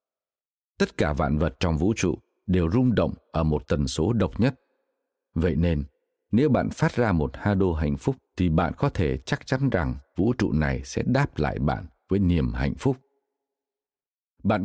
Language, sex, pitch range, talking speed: Vietnamese, male, 80-125 Hz, 190 wpm